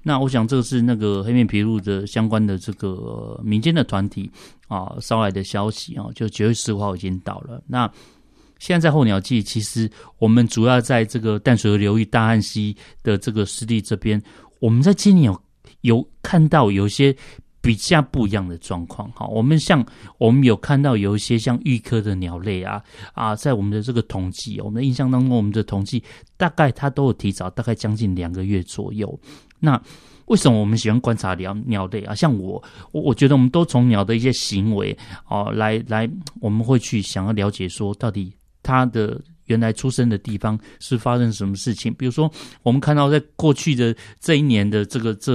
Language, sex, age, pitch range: Chinese, male, 30-49, 105-130 Hz